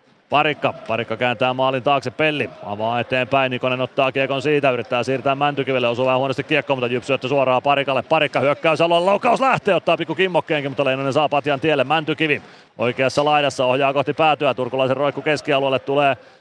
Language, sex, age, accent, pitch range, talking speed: Finnish, male, 30-49, native, 125-140 Hz, 160 wpm